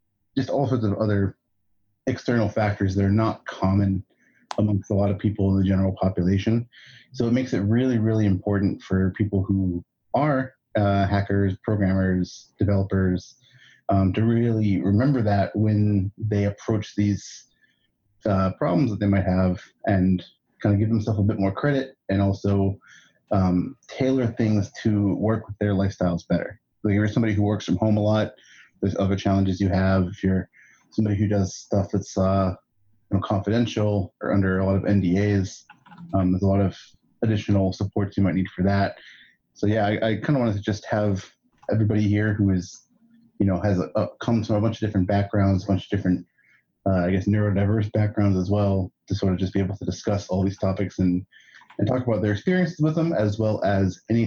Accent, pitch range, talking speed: American, 95-110 Hz, 190 wpm